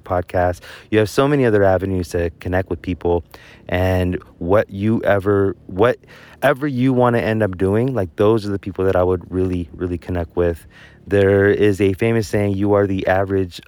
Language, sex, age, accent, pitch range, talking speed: English, male, 20-39, American, 90-110 Hz, 190 wpm